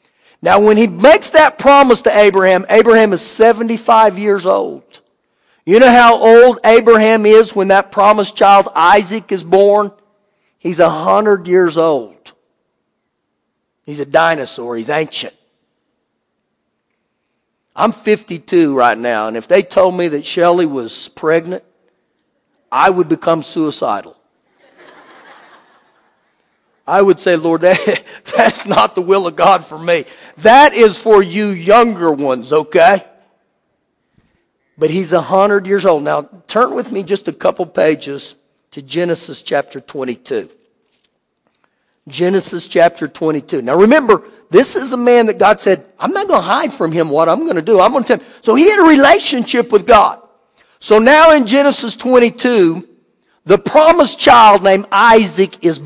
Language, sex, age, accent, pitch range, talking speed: English, male, 50-69, American, 170-225 Hz, 145 wpm